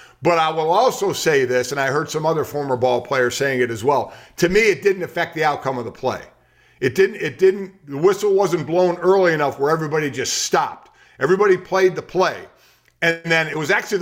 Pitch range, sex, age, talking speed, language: 150-195 Hz, male, 50-69, 220 wpm, English